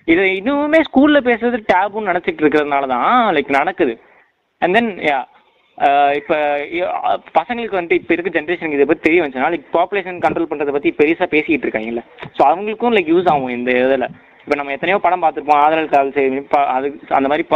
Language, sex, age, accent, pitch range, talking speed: Tamil, male, 20-39, native, 145-220 Hz, 150 wpm